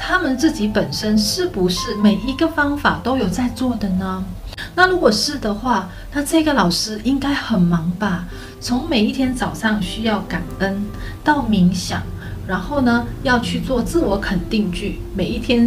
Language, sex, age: Chinese, female, 30-49